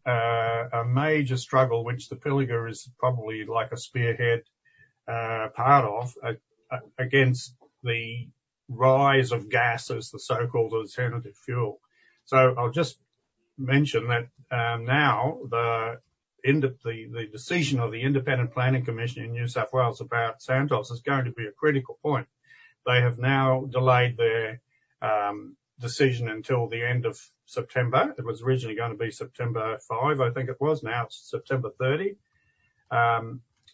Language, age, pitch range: English, 50-69, 115-135 Hz